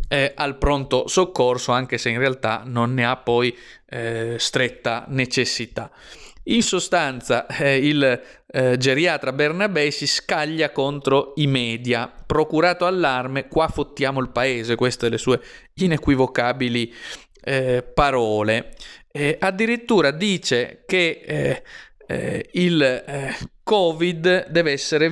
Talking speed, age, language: 120 wpm, 30-49, Italian